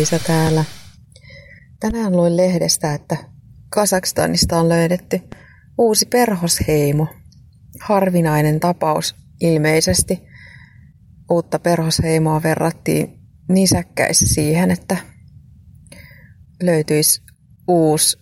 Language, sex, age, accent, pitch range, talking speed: Finnish, female, 30-49, native, 155-175 Hz, 70 wpm